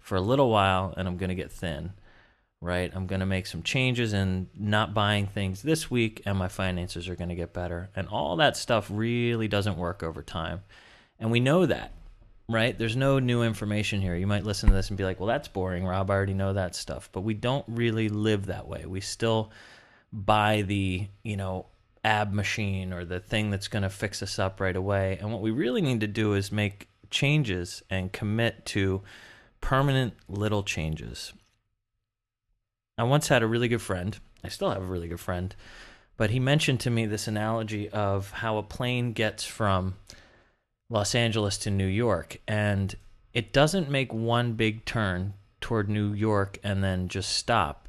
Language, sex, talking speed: English, male, 190 wpm